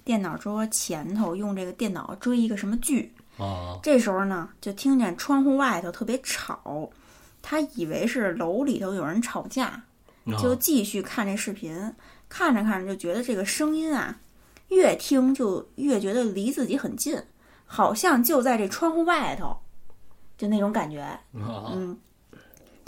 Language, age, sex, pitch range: Chinese, 20-39, female, 200-280 Hz